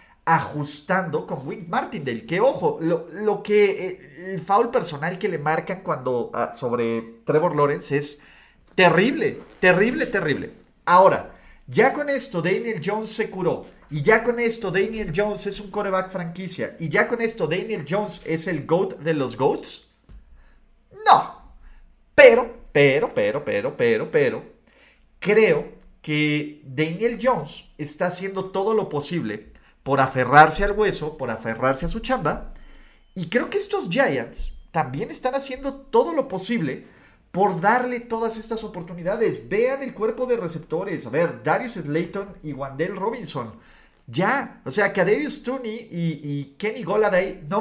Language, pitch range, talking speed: Spanish, 160-235 Hz, 150 wpm